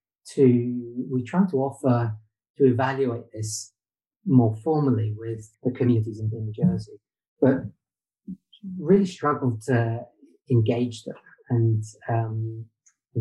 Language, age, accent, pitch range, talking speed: English, 30-49, British, 110-130 Hz, 110 wpm